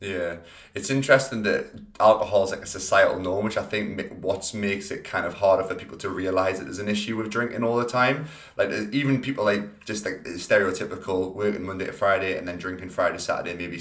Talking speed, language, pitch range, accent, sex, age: 215 wpm, English, 90-110 Hz, British, male, 20-39